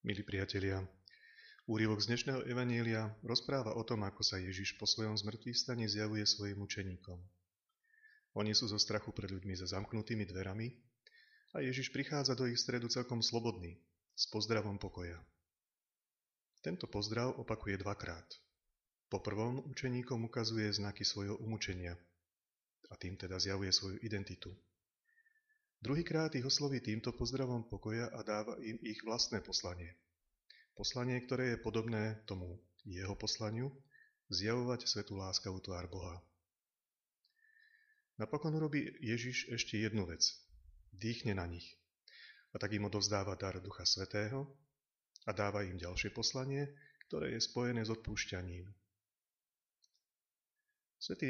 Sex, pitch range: male, 95-125 Hz